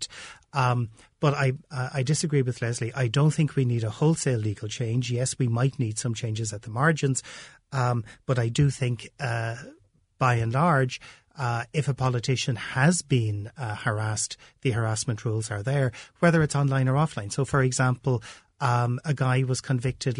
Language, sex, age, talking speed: English, male, 30-49, 180 wpm